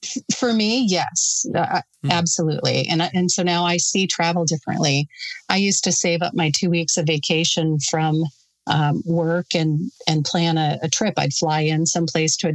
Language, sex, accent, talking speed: English, female, American, 175 wpm